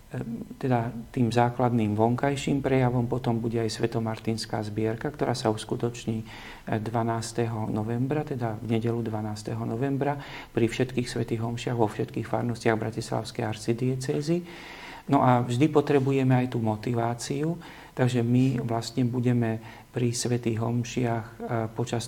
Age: 50-69